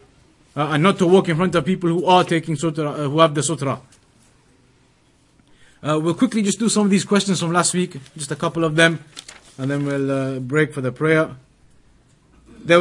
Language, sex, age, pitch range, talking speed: English, male, 30-49, 185-230 Hz, 205 wpm